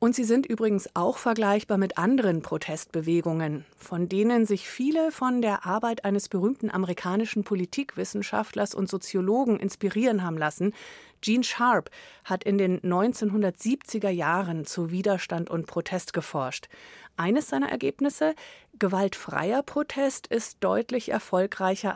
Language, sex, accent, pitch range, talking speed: German, female, German, 180-235 Hz, 125 wpm